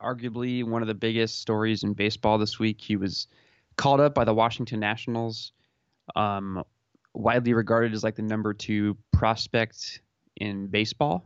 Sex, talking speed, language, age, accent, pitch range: male, 155 wpm, English, 20-39, American, 105-125 Hz